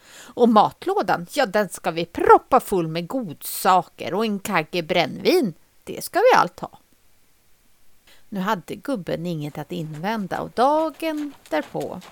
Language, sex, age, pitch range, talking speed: English, female, 30-49, 165-260 Hz, 140 wpm